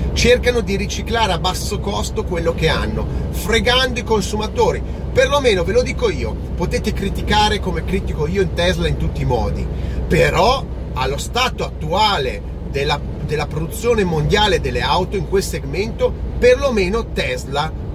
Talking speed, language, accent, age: 145 wpm, Italian, native, 40-59